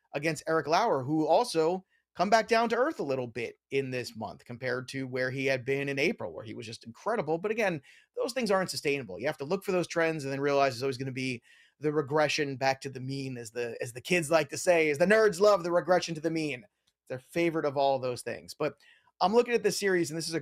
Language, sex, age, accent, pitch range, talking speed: English, male, 30-49, American, 135-180 Hz, 265 wpm